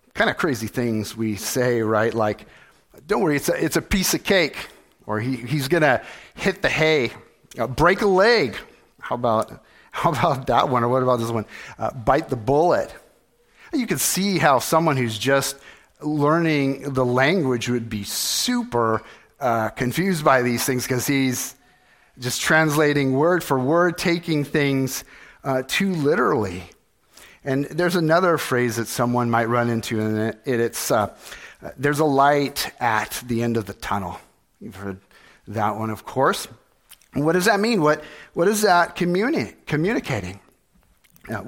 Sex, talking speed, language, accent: male, 165 wpm, English, American